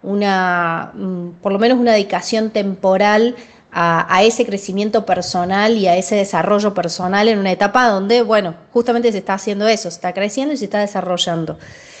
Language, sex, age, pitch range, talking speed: Spanish, female, 20-39, 190-230 Hz, 170 wpm